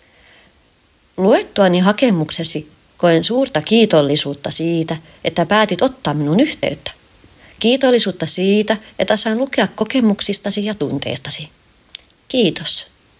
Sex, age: female, 30-49